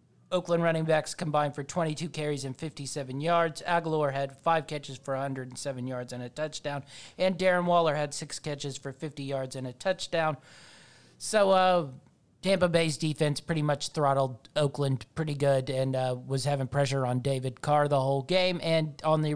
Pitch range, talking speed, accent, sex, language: 135-160 Hz, 175 wpm, American, male, English